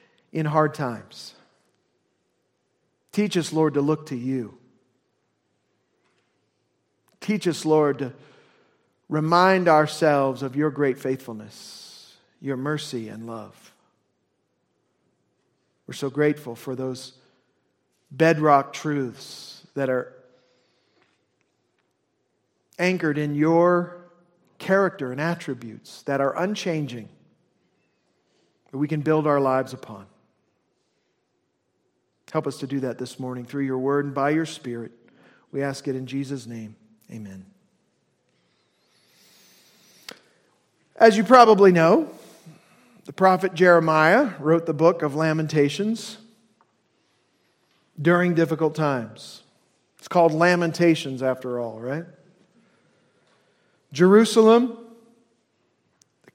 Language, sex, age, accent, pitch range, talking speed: English, male, 50-69, American, 130-180 Hz, 100 wpm